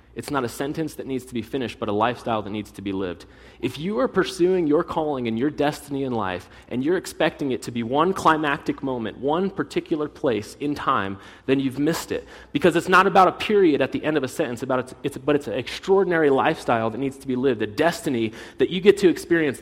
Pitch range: 115-160 Hz